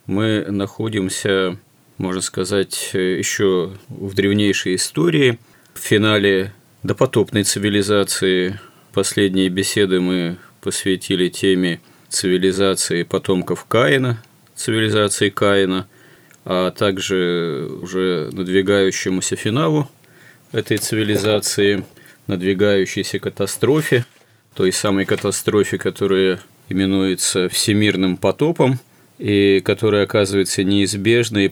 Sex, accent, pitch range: male, native, 95-110 Hz